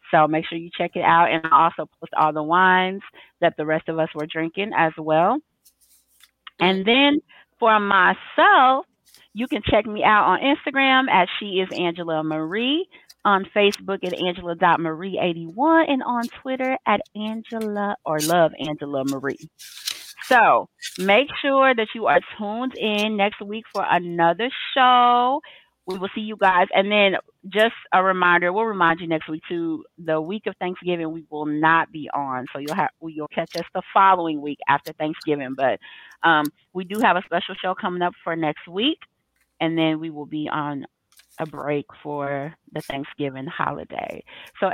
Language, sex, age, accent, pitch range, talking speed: English, female, 30-49, American, 160-210 Hz, 165 wpm